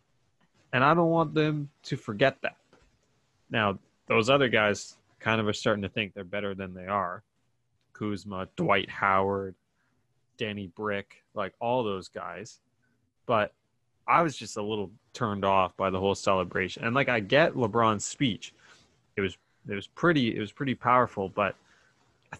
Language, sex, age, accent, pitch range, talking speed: English, male, 20-39, American, 100-135 Hz, 165 wpm